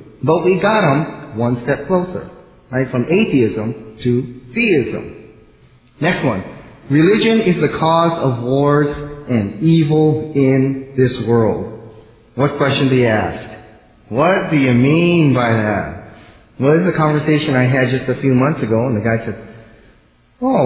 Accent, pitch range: American, 115-155 Hz